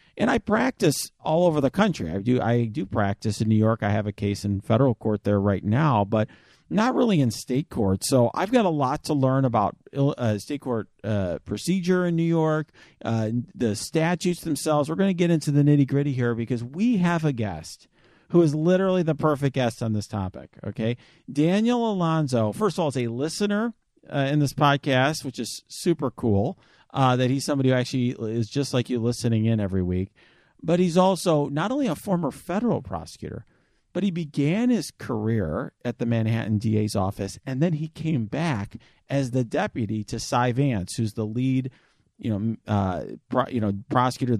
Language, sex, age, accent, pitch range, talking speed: English, male, 40-59, American, 110-160 Hz, 195 wpm